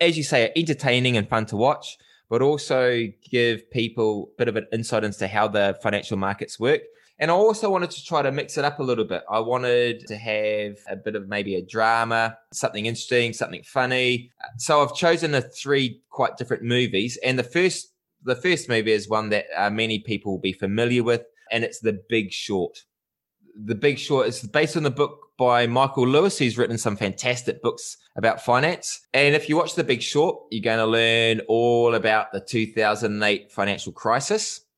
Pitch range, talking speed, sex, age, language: 105-130 Hz, 195 wpm, male, 20-39, English